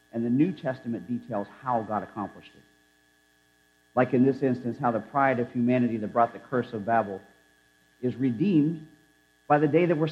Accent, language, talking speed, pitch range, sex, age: American, English, 185 wpm, 100-150 Hz, male, 50-69